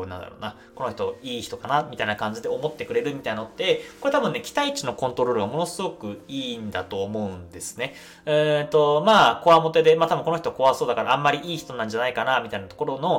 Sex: male